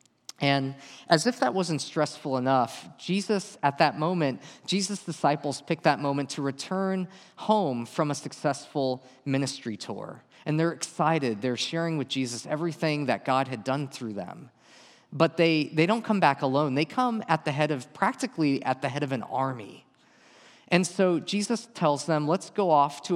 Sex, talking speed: male, 175 wpm